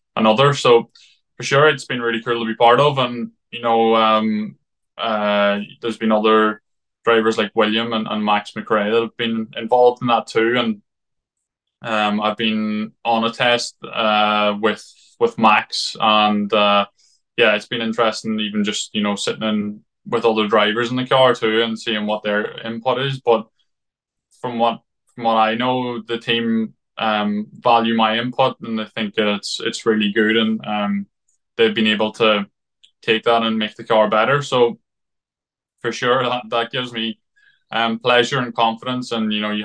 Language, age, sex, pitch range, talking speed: English, 20-39, male, 110-120 Hz, 180 wpm